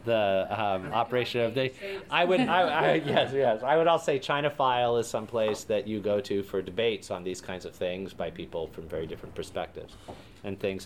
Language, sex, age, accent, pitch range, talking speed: English, male, 40-59, American, 95-125 Hz, 215 wpm